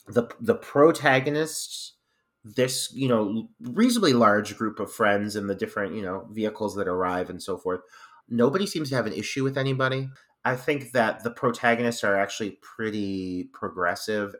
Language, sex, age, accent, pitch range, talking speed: English, male, 30-49, American, 105-130 Hz, 165 wpm